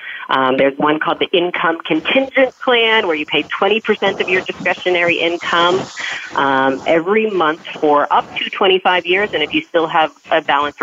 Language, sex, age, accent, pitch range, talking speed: English, female, 30-49, American, 150-205 Hz, 170 wpm